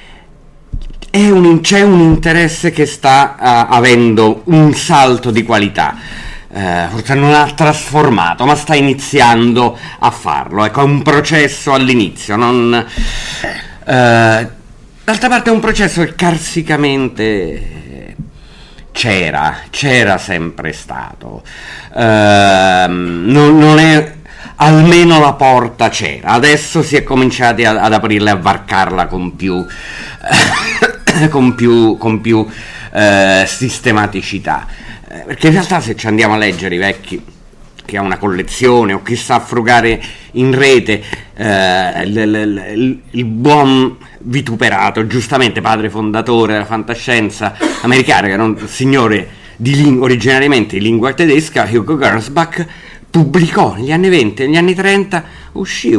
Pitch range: 110-150 Hz